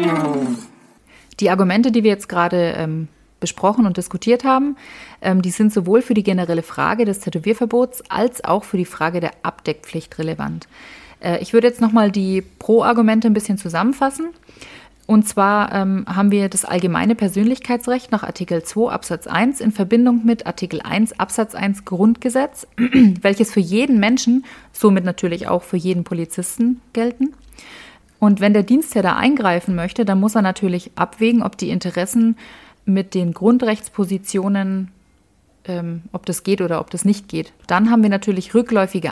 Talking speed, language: 160 wpm, German